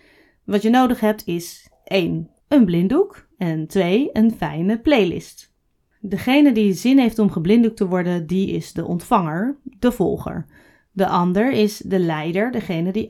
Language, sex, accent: Dutch, female, Dutch